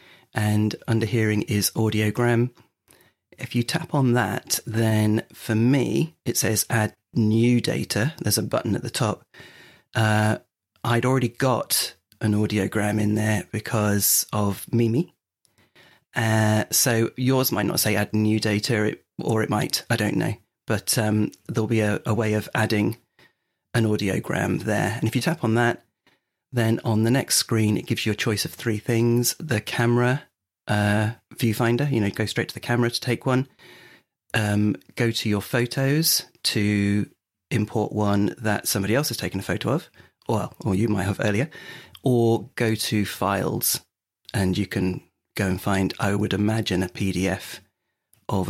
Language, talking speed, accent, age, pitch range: English, 165 wpm, British, 30-49, 105-120 Hz